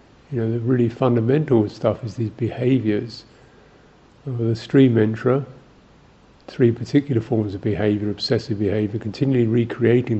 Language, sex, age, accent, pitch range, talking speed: English, male, 50-69, British, 105-120 Hz, 125 wpm